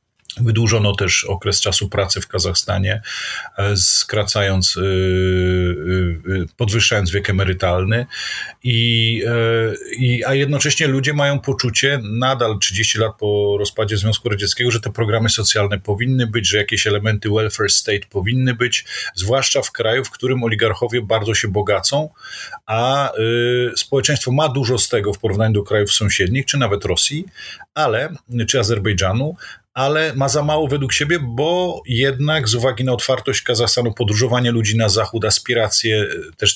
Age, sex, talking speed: 40-59, male, 140 wpm